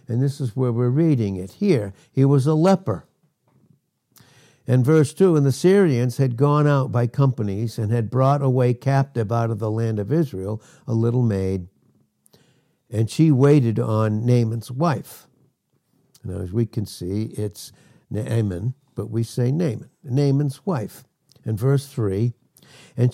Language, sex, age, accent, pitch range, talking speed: English, male, 60-79, American, 115-145 Hz, 155 wpm